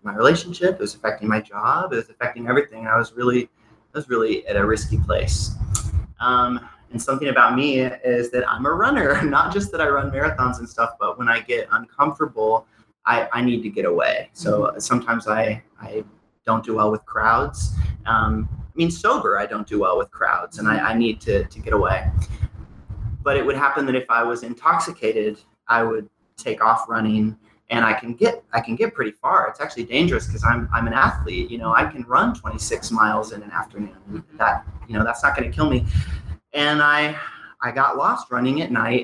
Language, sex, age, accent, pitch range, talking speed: English, male, 30-49, American, 110-130 Hz, 205 wpm